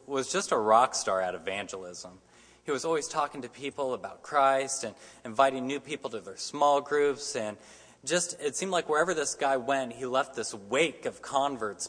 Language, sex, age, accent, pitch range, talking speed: English, male, 20-39, American, 115-145 Hz, 190 wpm